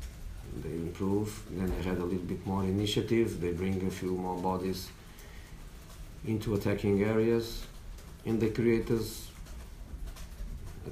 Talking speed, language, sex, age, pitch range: 130 wpm, English, male, 50-69, 85-105 Hz